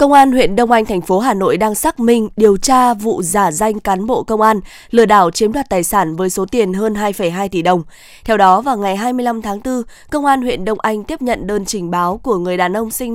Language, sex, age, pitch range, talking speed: Vietnamese, female, 20-39, 195-230 Hz, 255 wpm